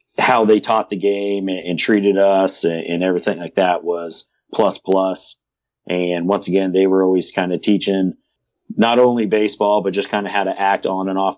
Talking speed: 195 wpm